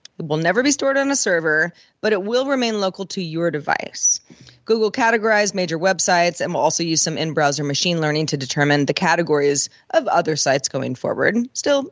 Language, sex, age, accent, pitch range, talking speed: English, female, 30-49, American, 170-240 Hz, 190 wpm